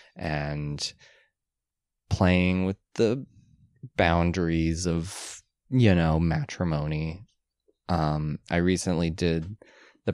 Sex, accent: male, American